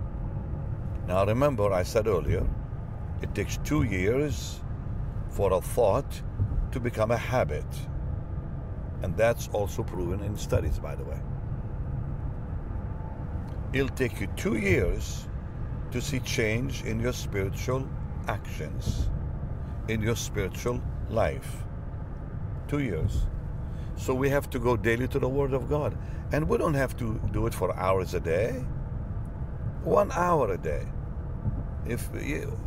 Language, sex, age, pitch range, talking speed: English, male, 60-79, 95-125 Hz, 130 wpm